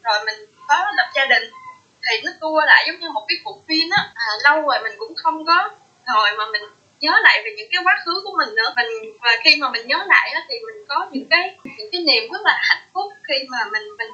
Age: 20-39